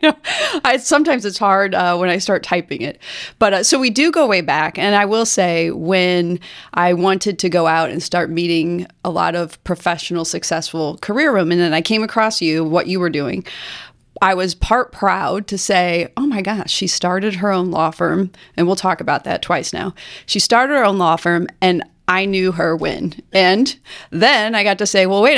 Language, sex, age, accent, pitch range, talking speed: English, female, 30-49, American, 170-200 Hz, 210 wpm